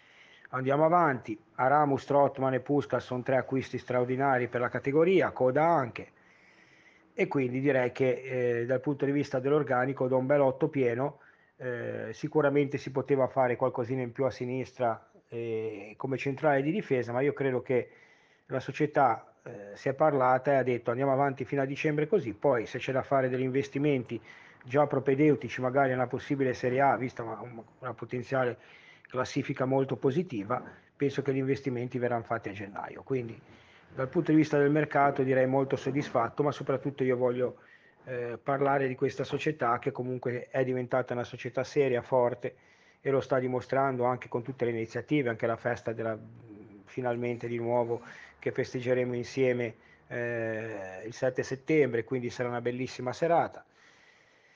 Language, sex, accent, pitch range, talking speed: Italian, male, native, 120-140 Hz, 160 wpm